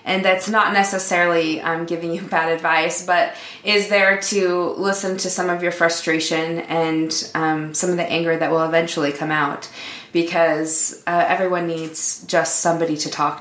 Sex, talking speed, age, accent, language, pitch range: female, 170 wpm, 20-39, American, English, 160-180 Hz